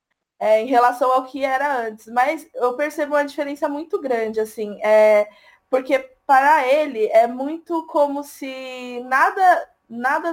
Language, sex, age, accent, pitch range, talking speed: Portuguese, female, 20-39, Brazilian, 235-295 Hz, 145 wpm